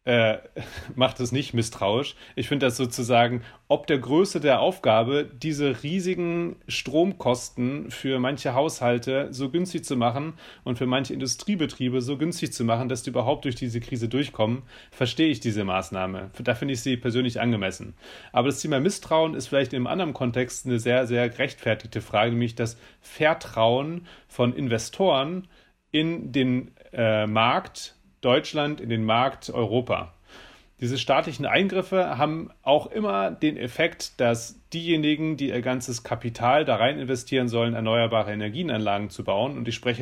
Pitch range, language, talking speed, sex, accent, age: 120-145 Hz, German, 155 wpm, male, German, 30-49